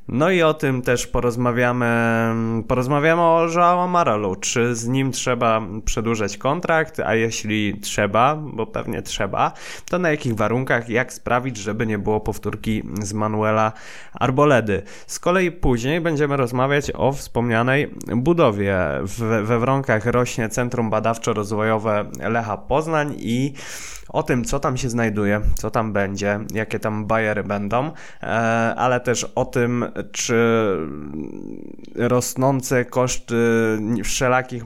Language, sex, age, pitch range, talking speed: Polish, male, 20-39, 110-125 Hz, 125 wpm